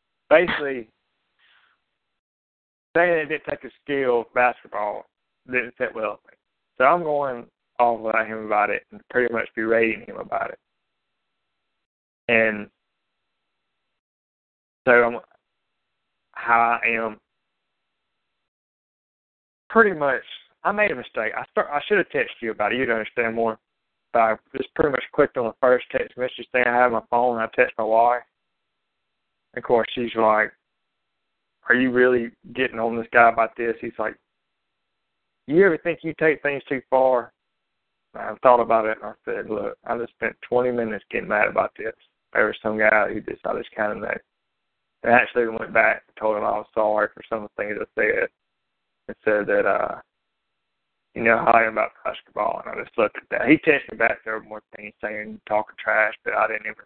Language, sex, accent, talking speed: English, male, American, 185 wpm